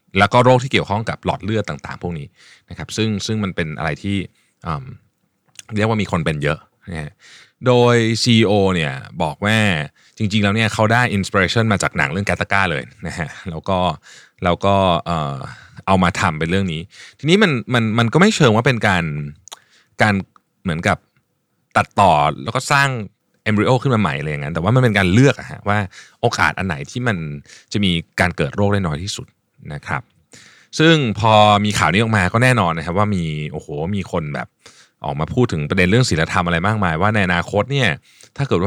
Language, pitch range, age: Thai, 85-110 Hz, 20-39